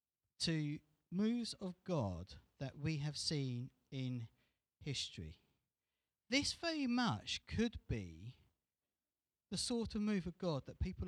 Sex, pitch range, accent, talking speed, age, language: male, 105-175 Hz, British, 125 wpm, 40-59, English